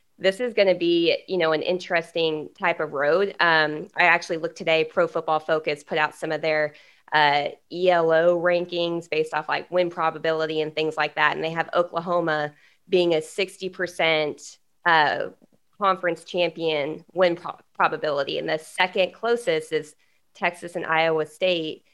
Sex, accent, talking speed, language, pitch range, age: female, American, 160 wpm, English, 160-185 Hz, 20-39